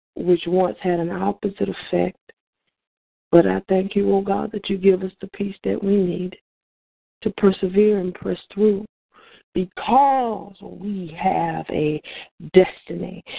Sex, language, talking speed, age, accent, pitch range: female, English, 145 wpm, 40-59, American, 185-245 Hz